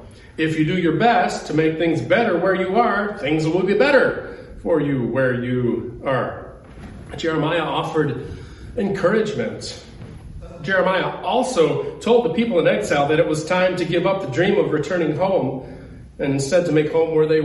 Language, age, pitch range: English, 40-59, 140-225 Hz